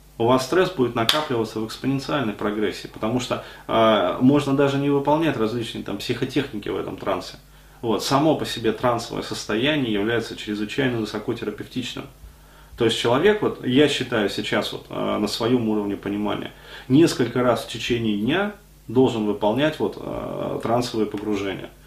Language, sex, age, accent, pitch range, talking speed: Russian, male, 30-49, native, 110-130 Hz, 150 wpm